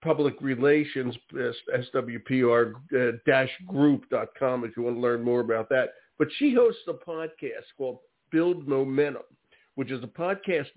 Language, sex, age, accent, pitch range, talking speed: English, male, 60-79, American, 130-160 Hz, 130 wpm